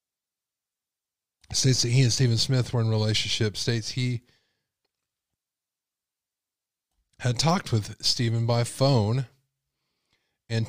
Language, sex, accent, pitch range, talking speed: English, male, American, 100-120 Hz, 100 wpm